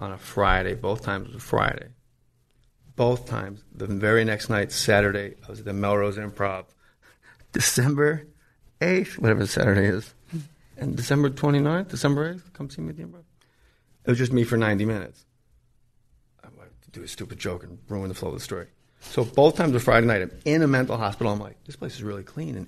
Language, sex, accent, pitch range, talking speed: English, male, American, 105-130 Hz, 205 wpm